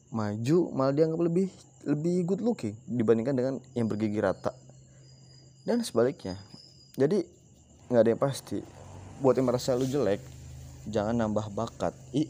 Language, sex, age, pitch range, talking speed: Indonesian, male, 20-39, 105-135 Hz, 135 wpm